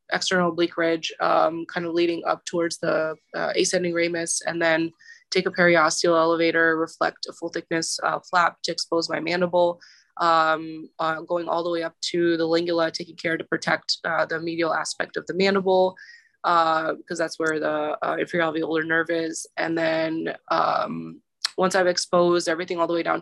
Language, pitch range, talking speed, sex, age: English, 165-175 Hz, 185 wpm, female, 20-39